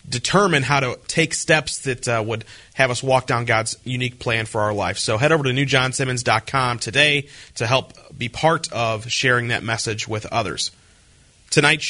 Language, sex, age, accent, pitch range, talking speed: English, male, 30-49, American, 120-145 Hz, 175 wpm